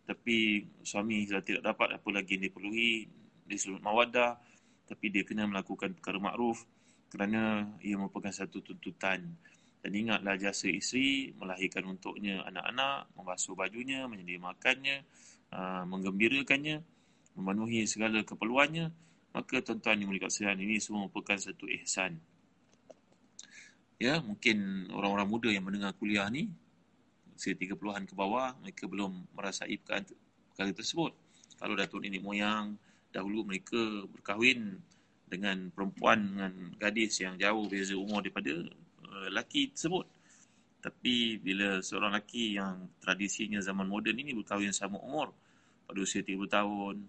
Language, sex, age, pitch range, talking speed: Malay, male, 20-39, 95-110 Hz, 125 wpm